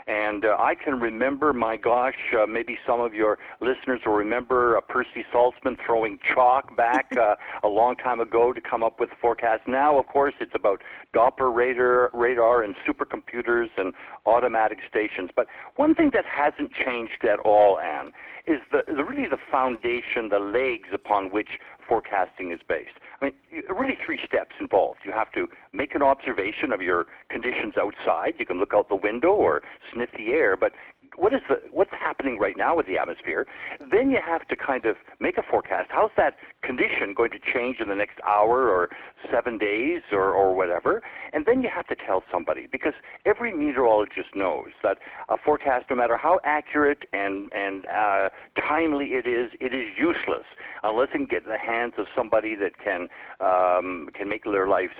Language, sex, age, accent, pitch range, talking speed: English, male, 50-69, American, 110-155 Hz, 190 wpm